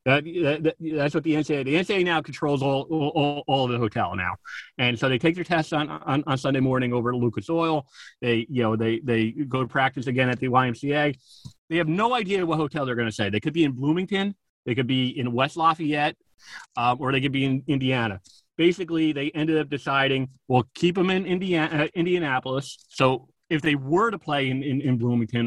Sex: male